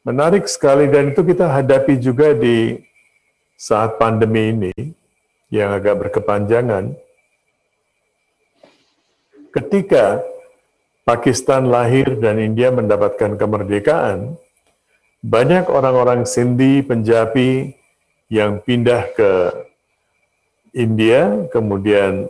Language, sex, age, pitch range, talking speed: Indonesian, male, 50-69, 110-145 Hz, 80 wpm